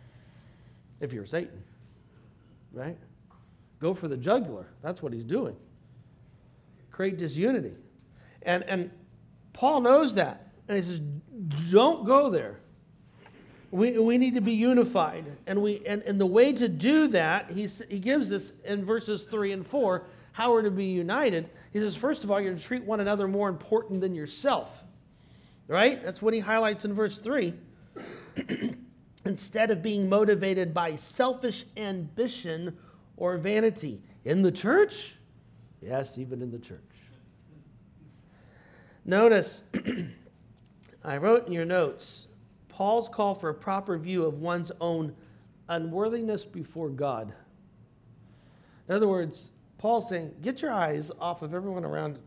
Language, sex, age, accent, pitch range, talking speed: English, male, 40-59, American, 160-220 Hz, 140 wpm